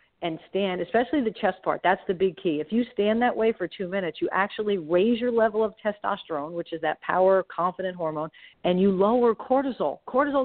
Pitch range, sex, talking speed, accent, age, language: 165-200 Hz, female, 205 wpm, American, 50-69, English